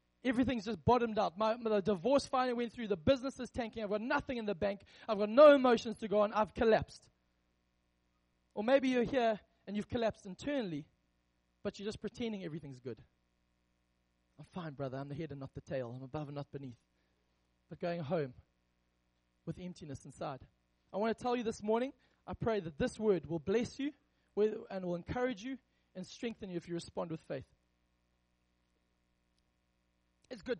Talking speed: 180 wpm